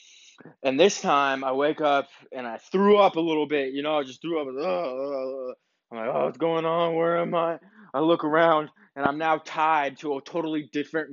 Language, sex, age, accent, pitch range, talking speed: English, male, 20-39, American, 125-160 Hz, 210 wpm